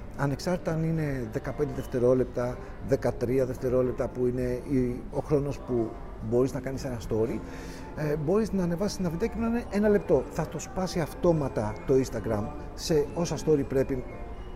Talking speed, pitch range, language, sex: 155 wpm, 125-170 Hz, Greek, male